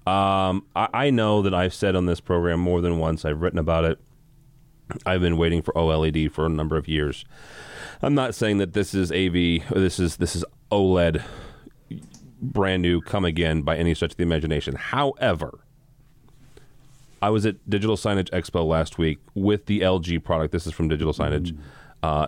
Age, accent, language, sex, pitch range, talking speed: 30-49, American, English, male, 85-120 Hz, 185 wpm